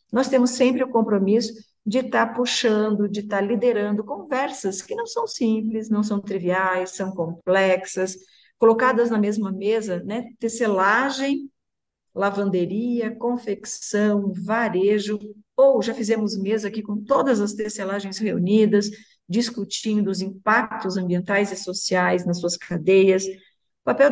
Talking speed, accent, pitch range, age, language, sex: 125 wpm, Brazilian, 195-230 Hz, 40-59, Portuguese, female